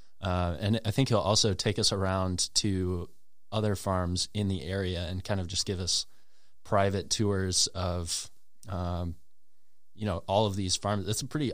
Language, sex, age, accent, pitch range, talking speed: English, male, 20-39, American, 90-100 Hz, 175 wpm